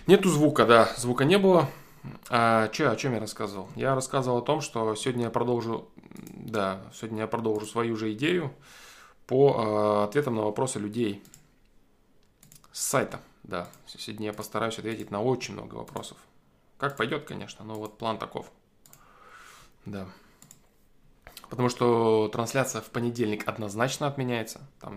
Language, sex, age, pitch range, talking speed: Russian, male, 20-39, 105-125 Hz, 130 wpm